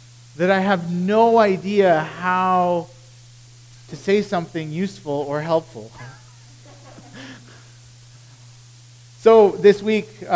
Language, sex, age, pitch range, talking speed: English, male, 40-59, 120-180 Hz, 95 wpm